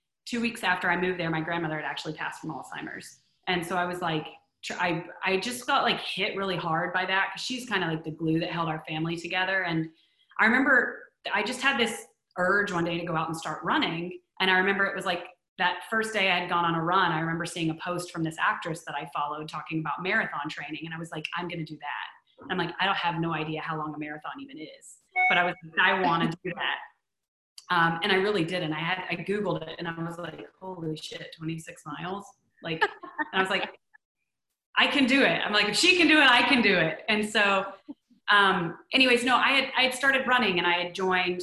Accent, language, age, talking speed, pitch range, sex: American, English, 30-49, 245 wpm, 165-195 Hz, female